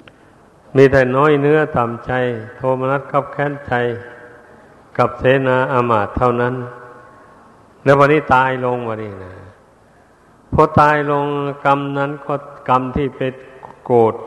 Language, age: Thai, 60-79